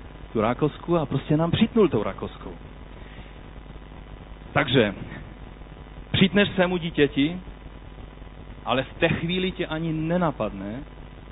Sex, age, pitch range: male, 40-59, 135-195 Hz